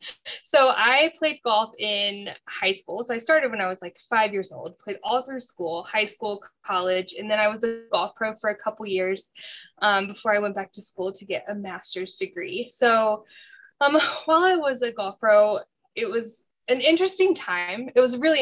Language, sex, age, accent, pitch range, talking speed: English, female, 10-29, American, 195-250 Hz, 210 wpm